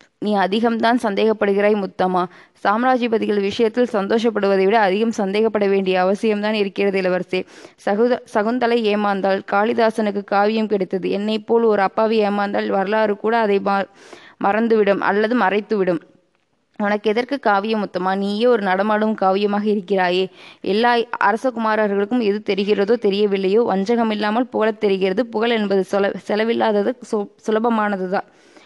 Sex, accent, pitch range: female, native, 200-225 Hz